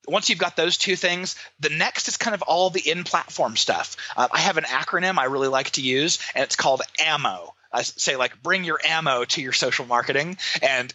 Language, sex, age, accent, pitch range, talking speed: English, male, 30-49, American, 125-180 Hz, 220 wpm